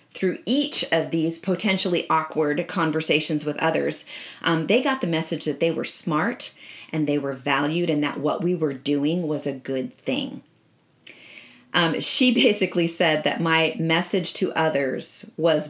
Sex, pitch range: female, 160-205 Hz